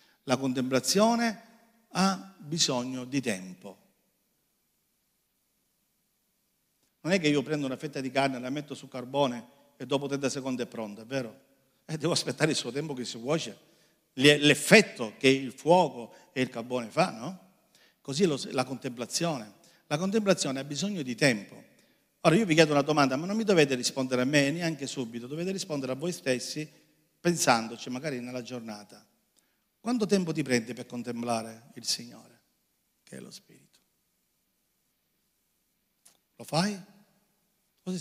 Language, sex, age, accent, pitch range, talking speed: Italian, male, 50-69, native, 130-200 Hz, 145 wpm